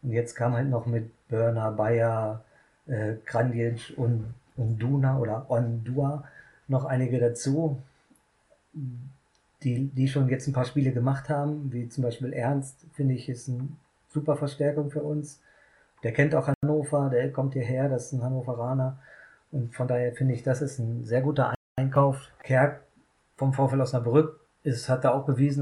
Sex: male